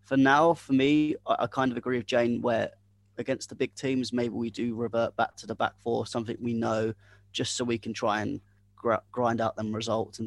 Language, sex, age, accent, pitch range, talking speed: English, male, 20-39, British, 105-120 Hz, 220 wpm